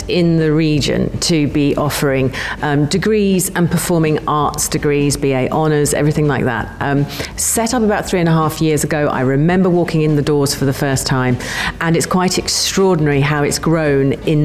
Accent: British